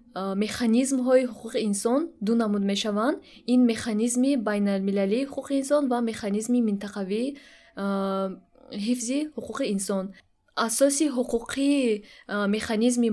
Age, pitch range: 10-29, 205-250 Hz